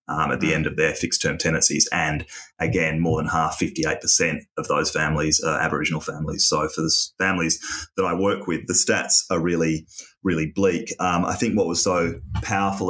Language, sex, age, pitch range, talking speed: English, male, 30-49, 80-85 Hz, 190 wpm